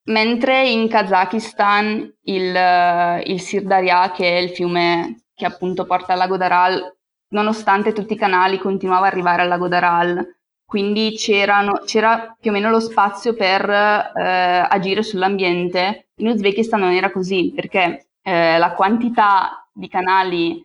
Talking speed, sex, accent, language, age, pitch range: 140 wpm, female, native, Italian, 20-39, 180-215 Hz